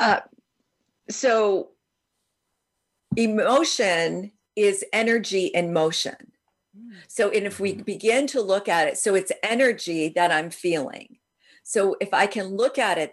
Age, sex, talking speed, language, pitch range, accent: 50-69, female, 135 wpm, English, 180-225 Hz, American